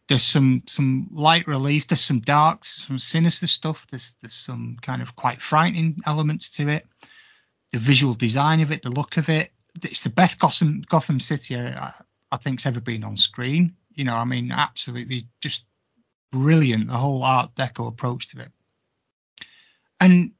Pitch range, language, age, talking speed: 120-155 Hz, English, 30-49, 170 wpm